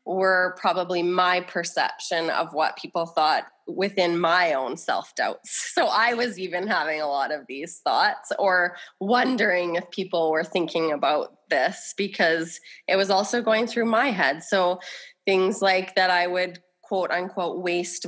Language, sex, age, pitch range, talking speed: English, female, 20-39, 165-205 Hz, 155 wpm